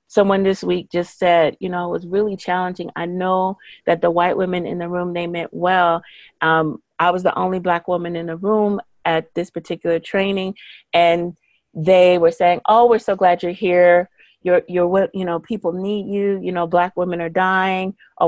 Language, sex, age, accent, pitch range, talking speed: English, female, 30-49, American, 170-200 Hz, 200 wpm